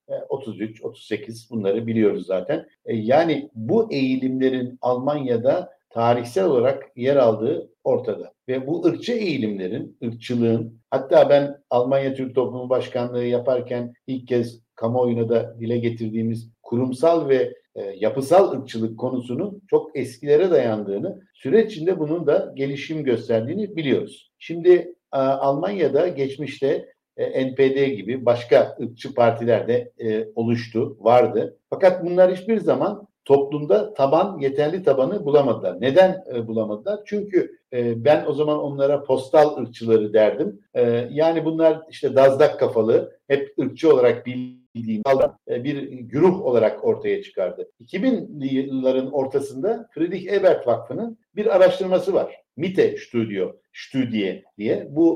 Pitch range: 120-185 Hz